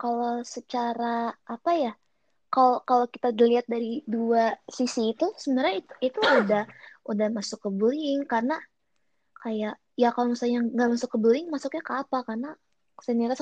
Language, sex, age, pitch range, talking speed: Indonesian, female, 20-39, 220-255 Hz, 150 wpm